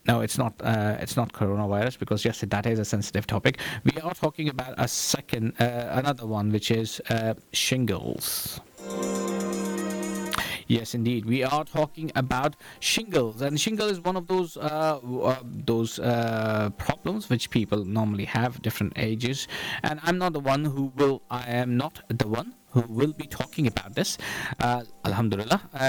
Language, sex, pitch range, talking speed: English, male, 115-145 Hz, 165 wpm